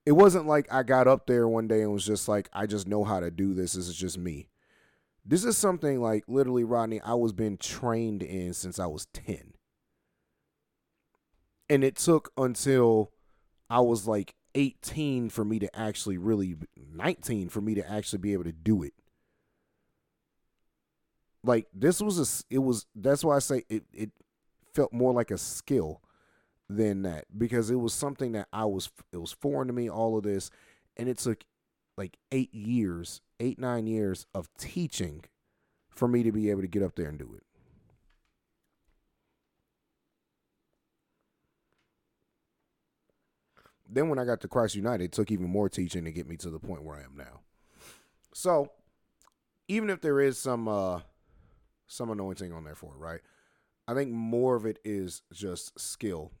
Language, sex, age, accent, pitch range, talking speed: English, male, 30-49, American, 95-125 Hz, 175 wpm